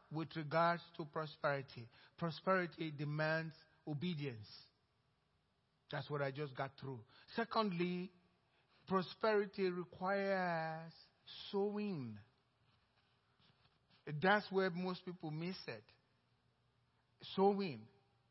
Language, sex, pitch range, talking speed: English, male, 145-225 Hz, 80 wpm